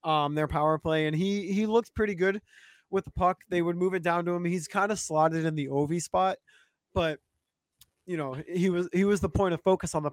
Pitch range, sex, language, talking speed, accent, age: 145-175 Hz, male, English, 245 wpm, American, 20-39